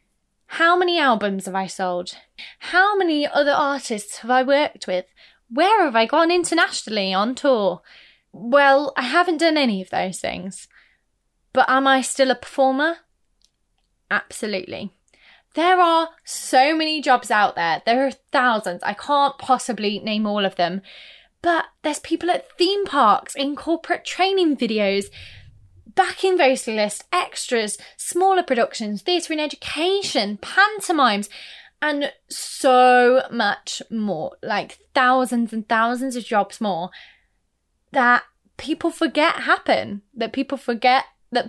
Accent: British